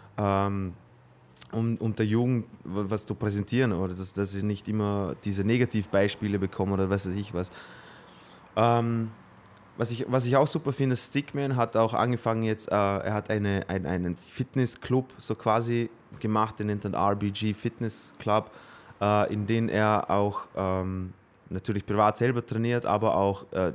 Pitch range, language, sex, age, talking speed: 100-120 Hz, German, male, 20-39, 150 wpm